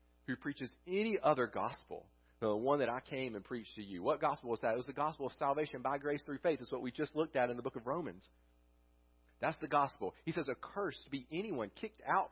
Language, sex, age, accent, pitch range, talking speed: English, male, 40-59, American, 95-140 Hz, 250 wpm